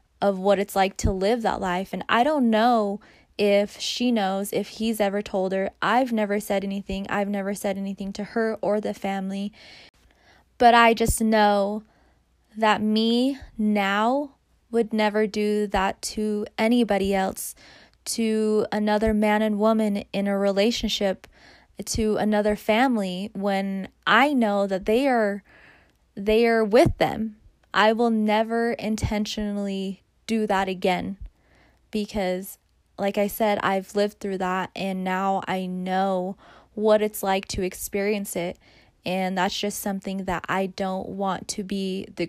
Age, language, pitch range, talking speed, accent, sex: 20-39, English, 195-215 Hz, 150 wpm, American, female